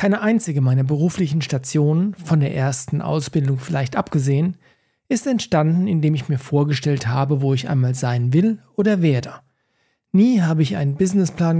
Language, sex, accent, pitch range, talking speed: German, male, German, 150-200 Hz, 155 wpm